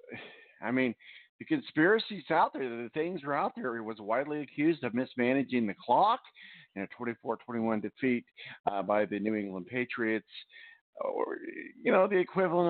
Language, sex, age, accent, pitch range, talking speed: English, male, 50-69, American, 110-150 Hz, 160 wpm